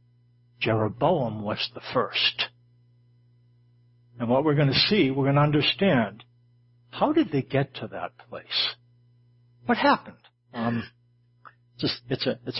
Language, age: English, 60-79